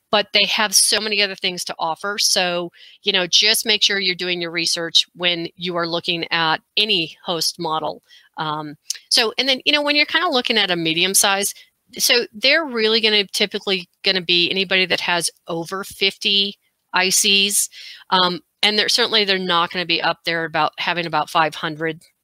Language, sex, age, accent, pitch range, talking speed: English, female, 40-59, American, 175-220 Hz, 185 wpm